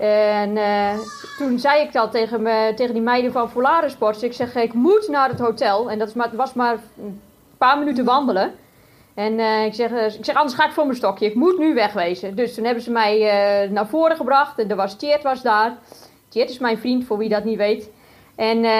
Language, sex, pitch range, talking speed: Dutch, female, 215-265 Hz, 225 wpm